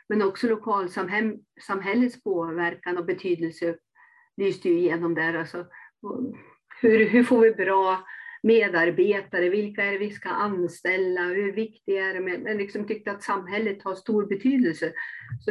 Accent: native